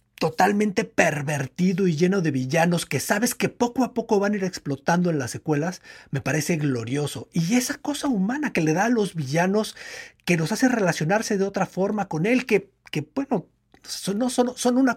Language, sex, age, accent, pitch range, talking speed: Spanish, male, 50-69, Mexican, 150-210 Hz, 195 wpm